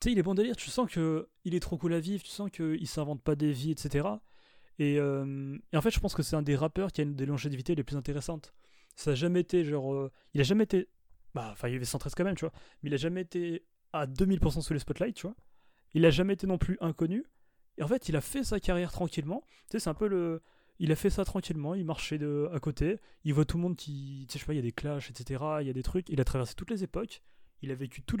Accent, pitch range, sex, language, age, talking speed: French, 135-175 Hz, male, French, 30-49, 295 wpm